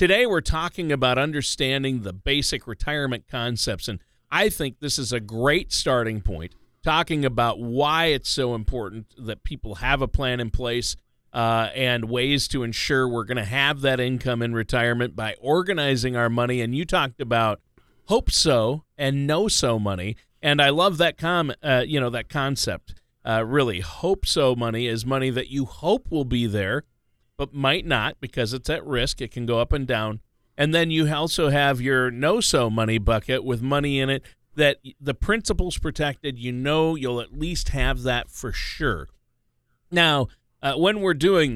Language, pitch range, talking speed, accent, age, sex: English, 120-145 Hz, 180 wpm, American, 40-59, male